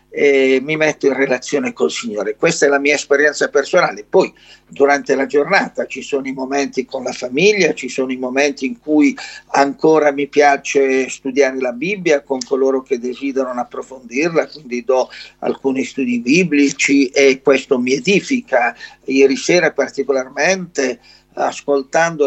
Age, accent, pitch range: 50-69, native, 130-150 Hz